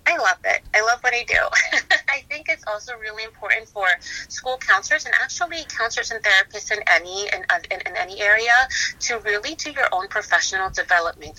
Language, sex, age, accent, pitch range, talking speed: English, female, 30-49, American, 170-215 Hz, 190 wpm